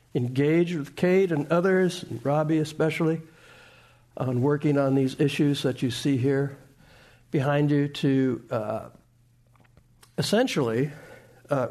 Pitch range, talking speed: 120-145 Hz, 120 wpm